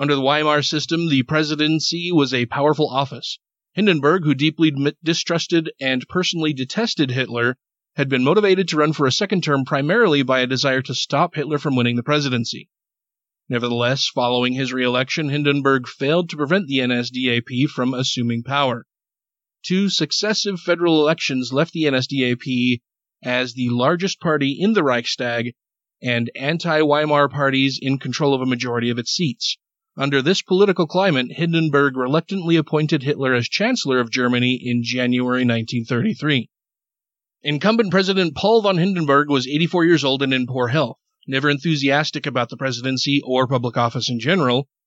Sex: male